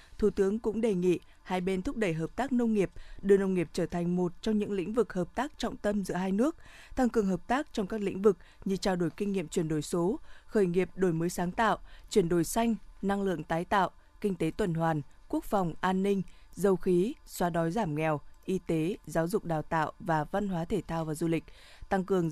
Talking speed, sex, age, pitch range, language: 240 wpm, female, 20-39, 175-215 Hz, Vietnamese